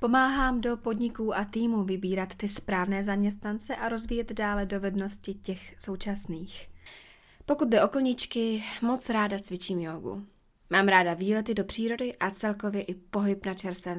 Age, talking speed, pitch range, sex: 20-39, 145 wpm, 180-220 Hz, female